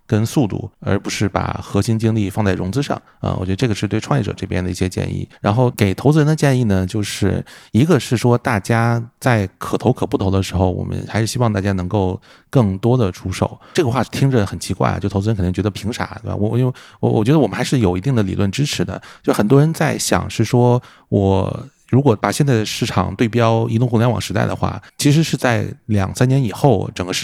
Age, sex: 30-49, male